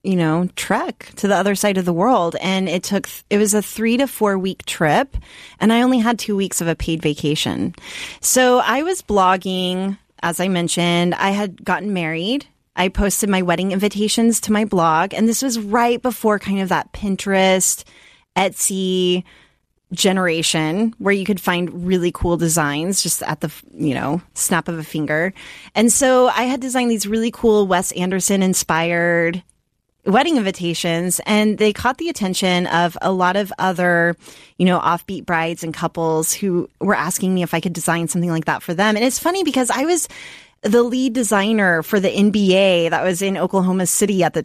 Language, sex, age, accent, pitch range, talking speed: English, female, 30-49, American, 175-225 Hz, 185 wpm